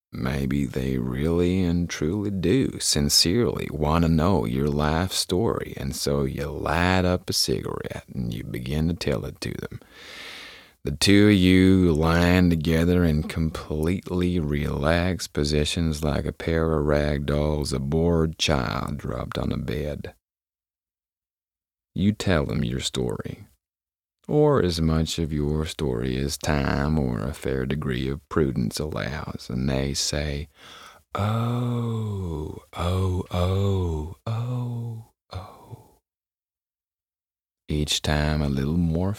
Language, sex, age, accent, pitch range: Chinese, male, 30-49, American, 75-90 Hz